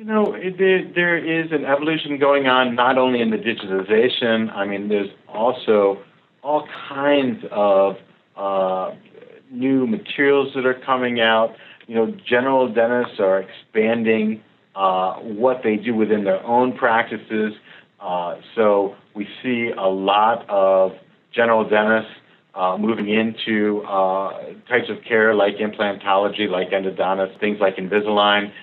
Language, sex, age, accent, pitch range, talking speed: English, male, 50-69, American, 105-125 Hz, 140 wpm